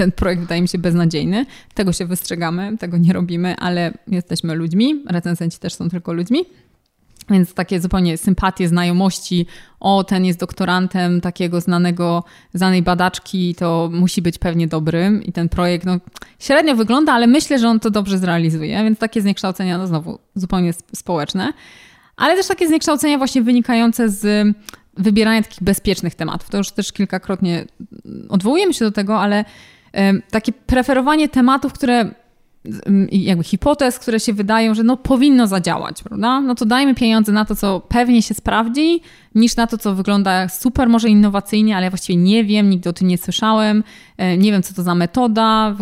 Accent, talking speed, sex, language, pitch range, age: native, 165 wpm, female, Polish, 180-225 Hz, 20-39